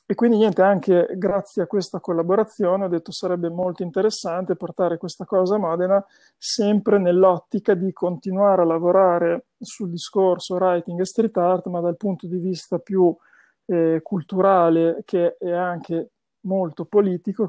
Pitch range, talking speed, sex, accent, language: 170-195 Hz, 150 wpm, male, native, Italian